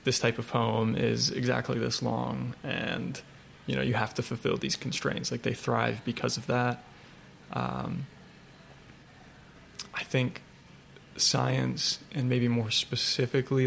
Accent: American